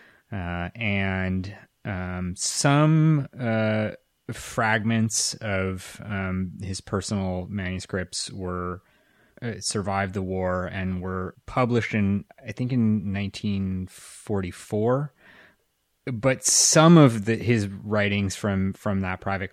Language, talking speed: English, 105 wpm